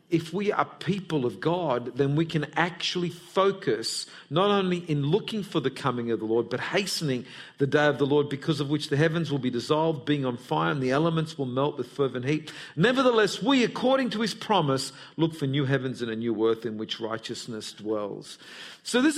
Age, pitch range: 50-69, 130-175 Hz